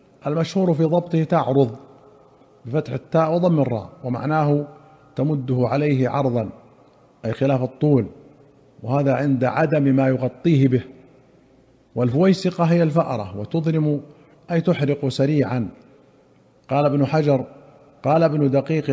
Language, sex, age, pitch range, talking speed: Arabic, male, 50-69, 135-155 Hz, 110 wpm